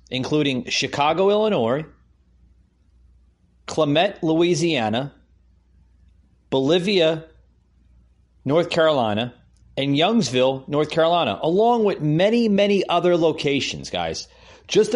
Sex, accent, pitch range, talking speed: male, American, 110-170 Hz, 80 wpm